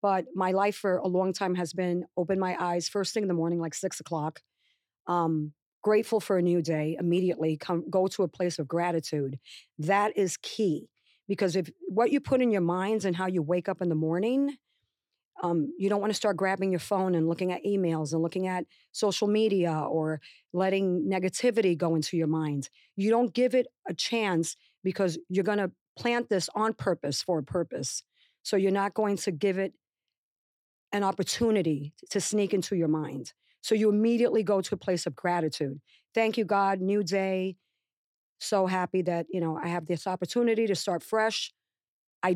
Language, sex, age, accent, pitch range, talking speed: English, female, 40-59, American, 175-205 Hz, 195 wpm